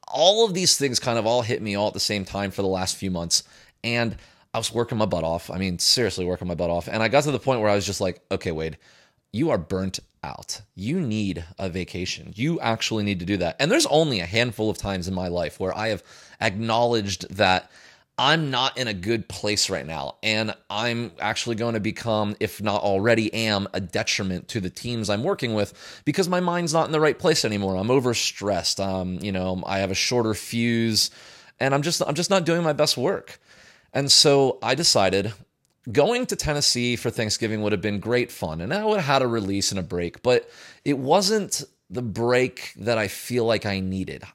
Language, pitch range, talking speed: English, 95-130 Hz, 225 wpm